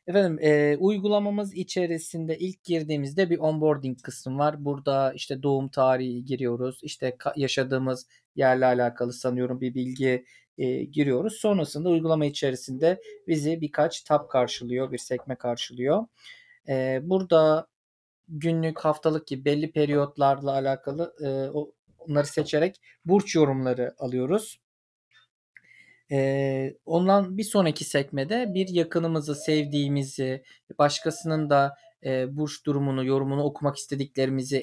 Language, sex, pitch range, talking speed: Turkish, male, 130-160 Hz, 110 wpm